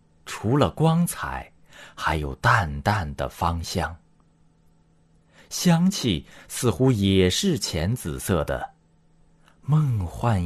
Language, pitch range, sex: Chinese, 80-130 Hz, male